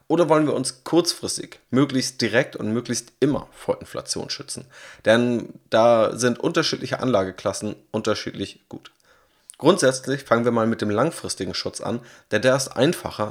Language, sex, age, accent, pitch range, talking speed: German, male, 30-49, German, 105-130 Hz, 150 wpm